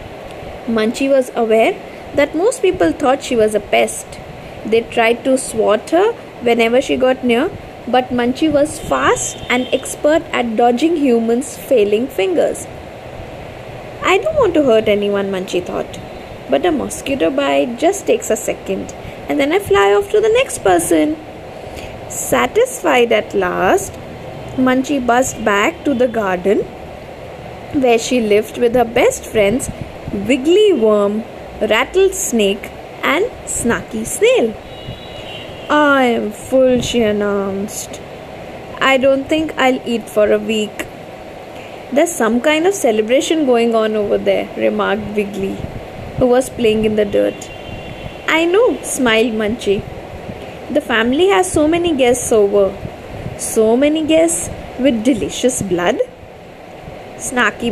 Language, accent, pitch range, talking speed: English, Indian, 215-295 Hz, 130 wpm